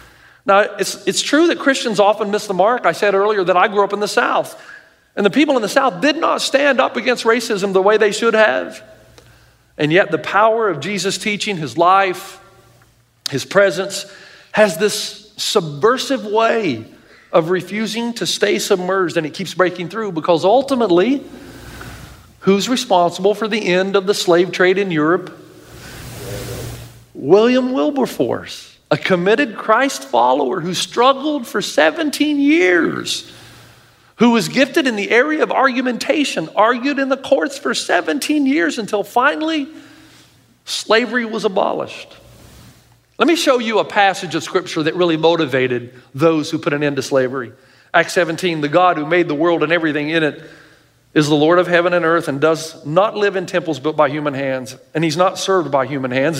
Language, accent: English, American